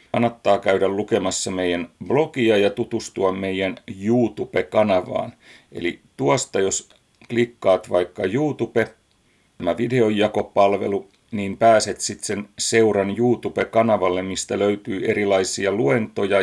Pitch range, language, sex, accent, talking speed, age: 95-120 Hz, Finnish, male, native, 100 wpm, 40-59